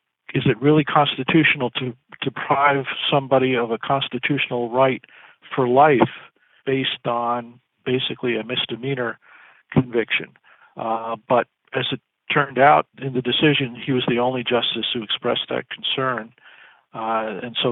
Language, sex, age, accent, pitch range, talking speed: English, male, 50-69, American, 120-145 Hz, 135 wpm